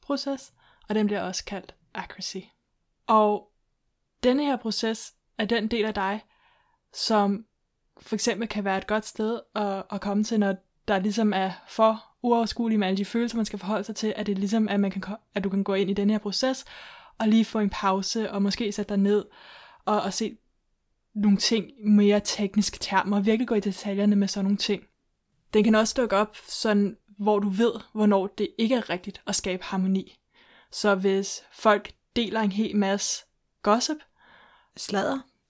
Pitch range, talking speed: 200-225 Hz, 190 wpm